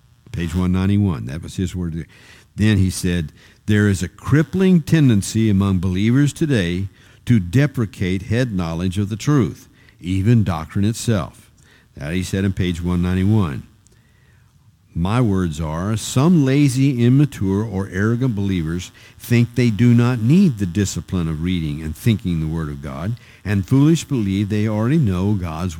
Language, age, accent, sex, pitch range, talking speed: English, 50-69, American, male, 95-130 Hz, 150 wpm